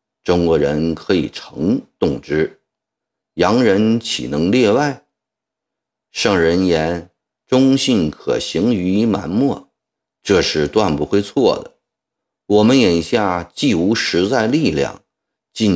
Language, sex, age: Chinese, male, 50-69